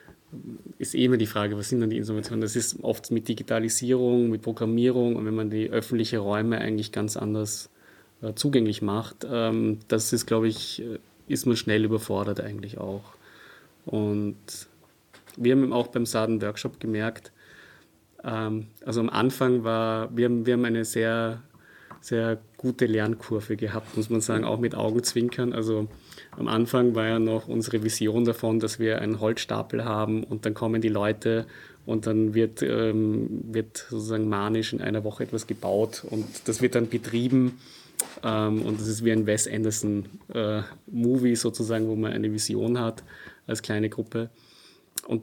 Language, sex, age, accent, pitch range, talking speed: German, male, 30-49, German, 110-120 Hz, 165 wpm